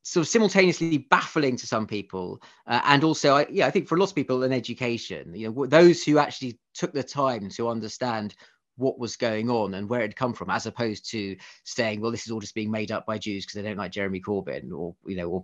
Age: 30-49